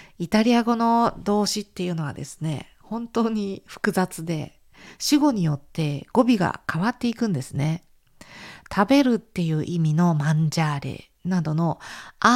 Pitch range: 160-220 Hz